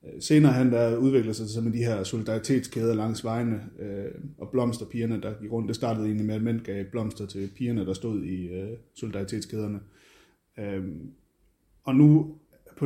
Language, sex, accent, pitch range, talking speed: Danish, male, native, 105-125 Hz, 155 wpm